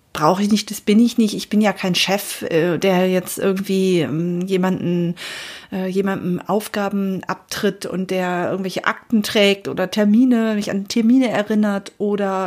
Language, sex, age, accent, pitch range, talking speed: German, female, 30-49, German, 195-240 Hz, 150 wpm